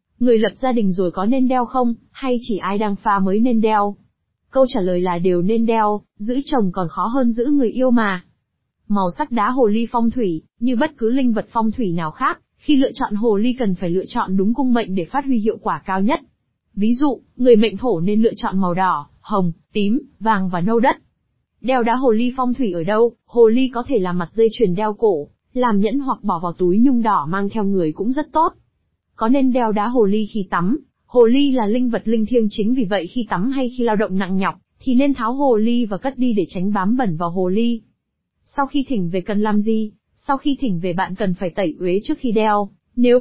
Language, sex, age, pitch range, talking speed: Vietnamese, female, 20-39, 200-250 Hz, 245 wpm